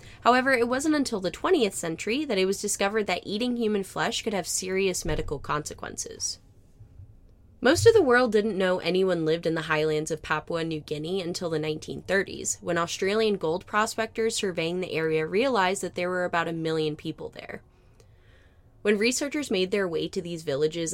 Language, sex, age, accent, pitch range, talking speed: English, female, 20-39, American, 150-205 Hz, 180 wpm